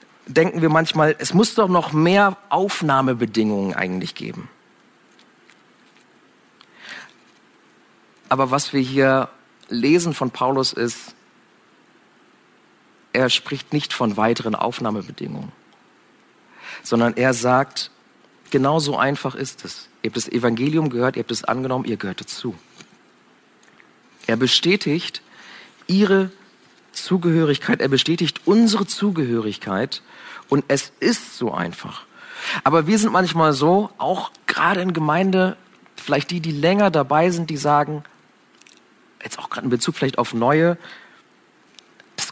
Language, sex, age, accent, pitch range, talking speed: German, male, 40-59, German, 125-175 Hz, 120 wpm